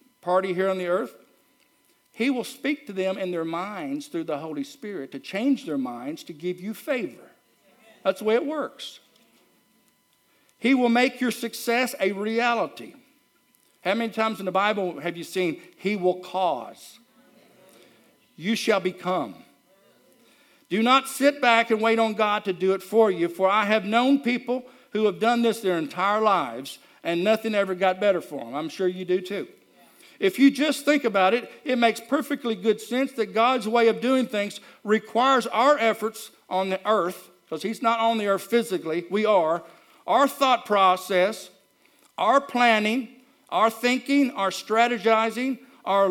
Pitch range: 190-245 Hz